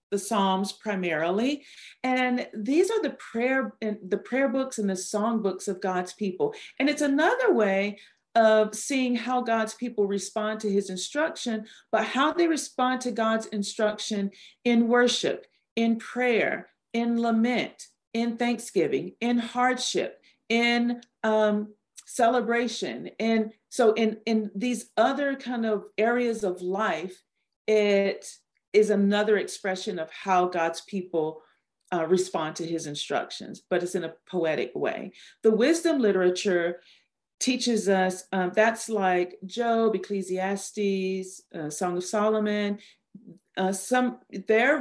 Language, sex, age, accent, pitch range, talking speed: English, female, 40-59, American, 195-235 Hz, 130 wpm